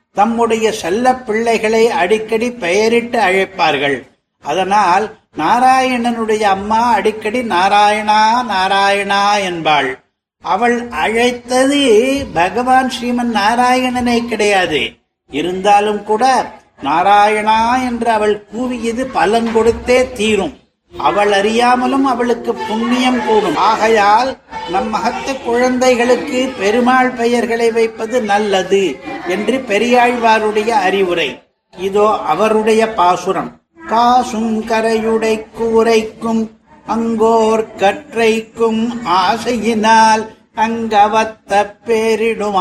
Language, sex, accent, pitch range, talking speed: Tamil, male, native, 215-245 Hz, 75 wpm